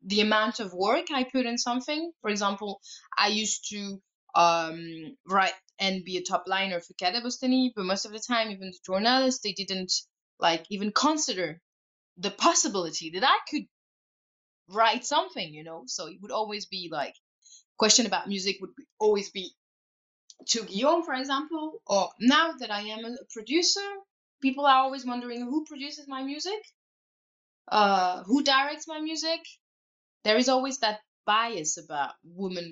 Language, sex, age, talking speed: English, female, 20-39, 160 wpm